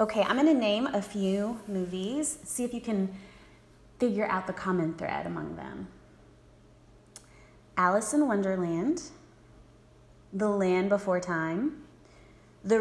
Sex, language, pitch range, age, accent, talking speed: female, English, 190-270 Hz, 30-49, American, 120 wpm